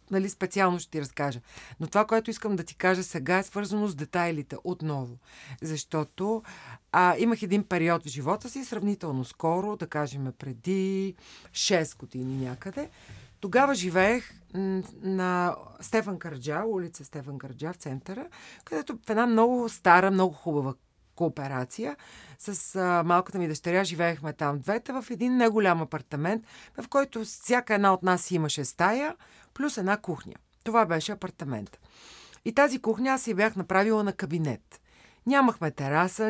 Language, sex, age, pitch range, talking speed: Bulgarian, female, 40-59, 160-225 Hz, 140 wpm